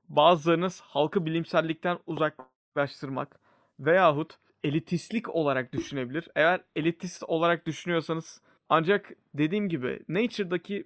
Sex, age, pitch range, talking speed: male, 30-49, 150-185 Hz, 90 wpm